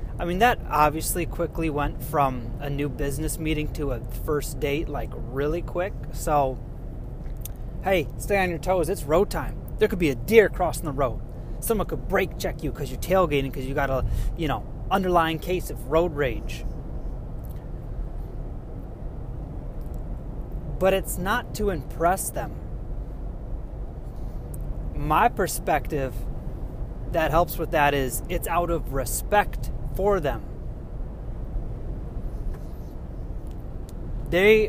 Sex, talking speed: male, 130 wpm